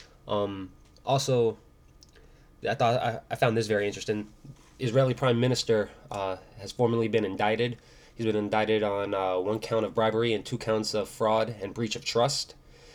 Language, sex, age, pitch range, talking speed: English, male, 20-39, 105-125 Hz, 165 wpm